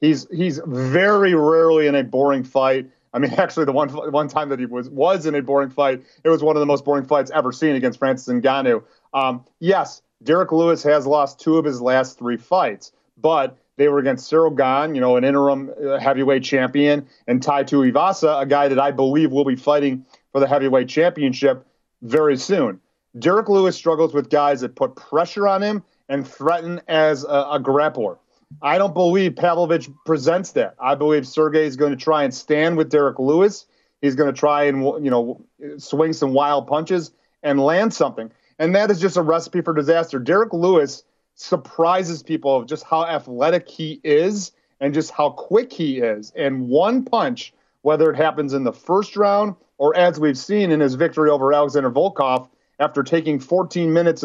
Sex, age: male, 30-49